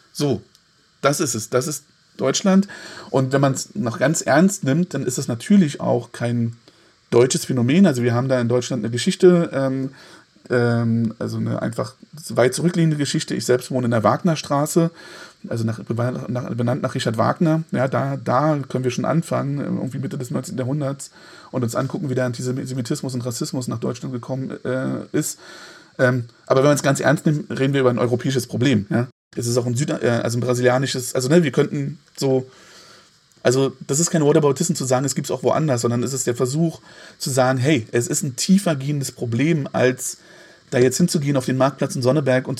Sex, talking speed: male, 200 wpm